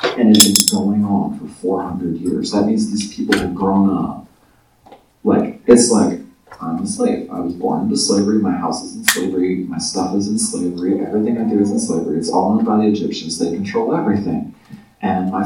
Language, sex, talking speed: English, male, 205 wpm